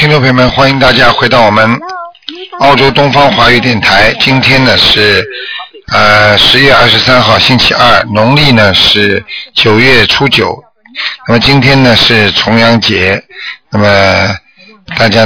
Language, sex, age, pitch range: Chinese, male, 50-69, 105-135 Hz